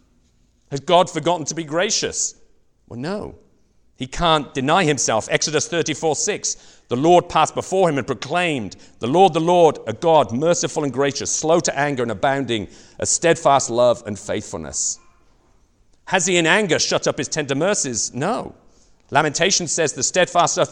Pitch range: 115-170 Hz